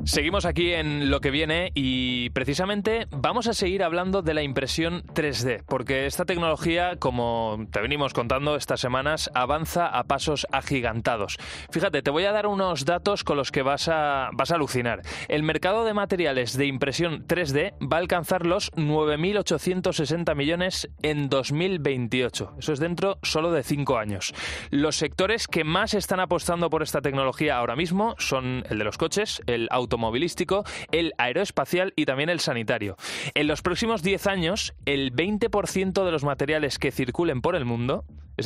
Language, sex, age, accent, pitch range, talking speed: Spanish, male, 20-39, Spanish, 125-175 Hz, 165 wpm